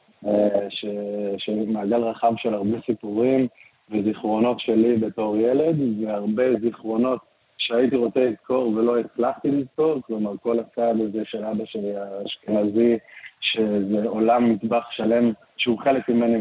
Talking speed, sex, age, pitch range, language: 120 wpm, male, 20-39, 105-120 Hz, Hebrew